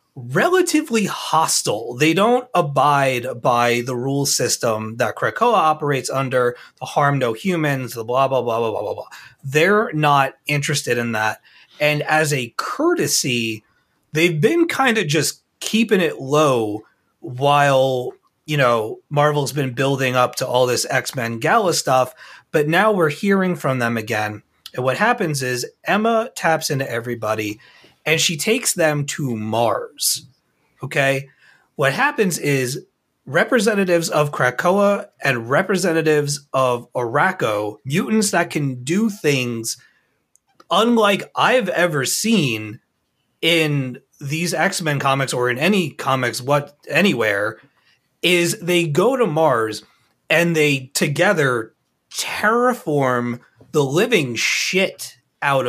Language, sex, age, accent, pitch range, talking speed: English, male, 30-49, American, 125-175 Hz, 130 wpm